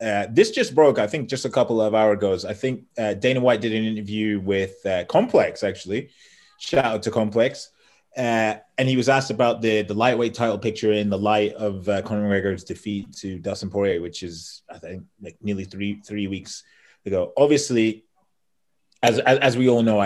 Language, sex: English, male